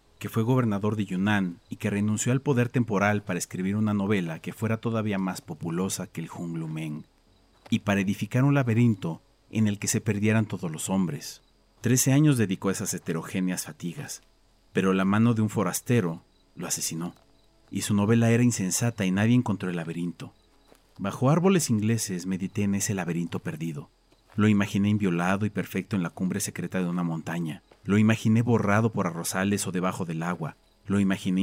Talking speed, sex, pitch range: 180 wpm, male, 90-115 Hz